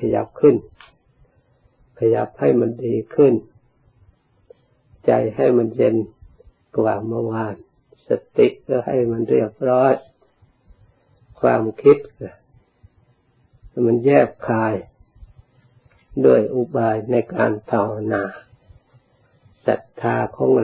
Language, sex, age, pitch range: Thai, male, 60-79, 105-125 Hz